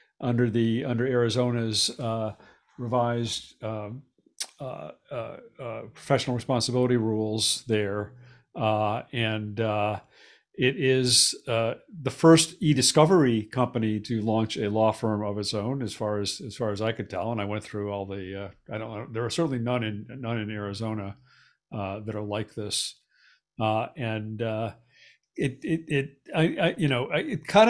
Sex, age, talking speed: male, 50-69, 165 wpm